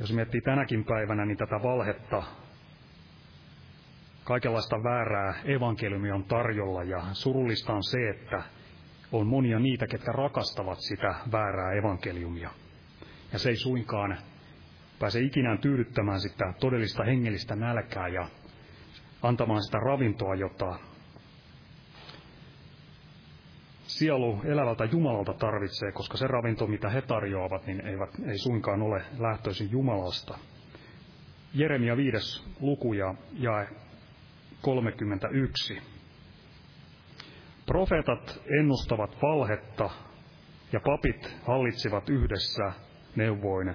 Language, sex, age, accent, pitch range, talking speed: Finnish, male, 30-49, native, 100-130 Hz, 95 wpm